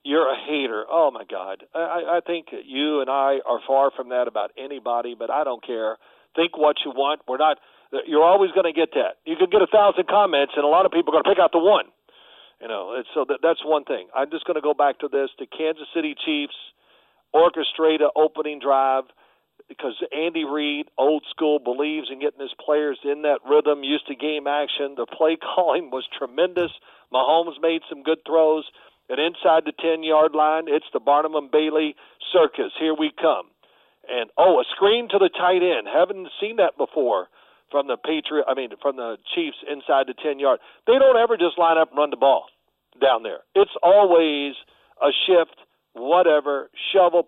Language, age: English, 40-59